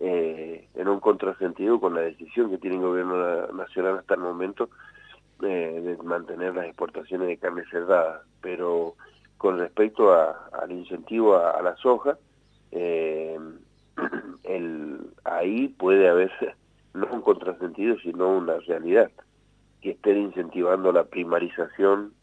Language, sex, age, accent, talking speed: Spanish, male, 40-59, Argentinian, 135 wpm